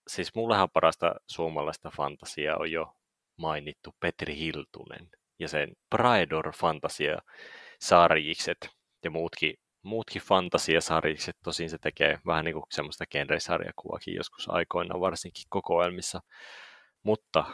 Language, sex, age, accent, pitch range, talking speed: Finnish, male, 30-49, native, 80-100 Hz, 105 wpm